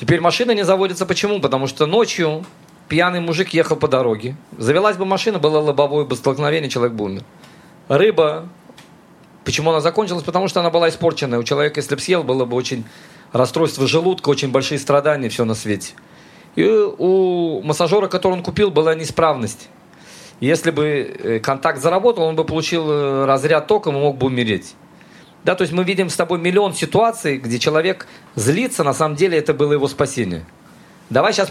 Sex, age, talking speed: male, 40-59, 170 wpm